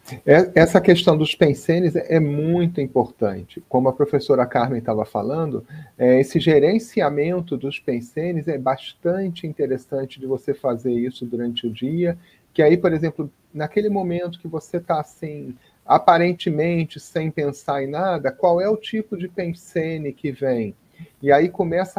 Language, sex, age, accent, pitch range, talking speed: Portuguese, male, 40-59, Brazilian, 135-185 Hz, 145 wpm